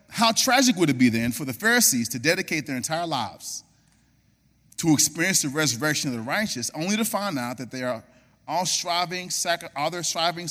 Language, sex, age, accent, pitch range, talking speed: English, male, 30-49, American, 140-220 Hz, 190 wpm